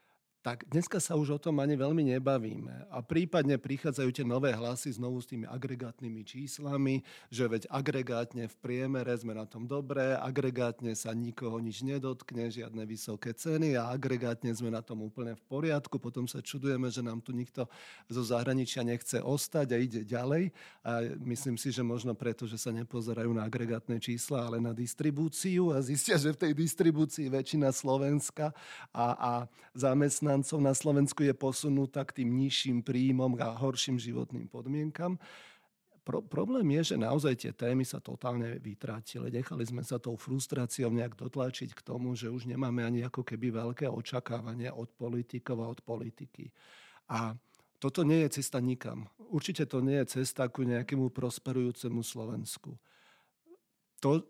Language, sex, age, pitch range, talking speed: Slovak, male, 40-59, 120-140 Hz, 160 wpm